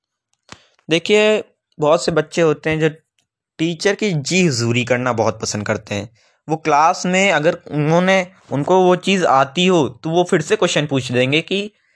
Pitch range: 130-175 Hz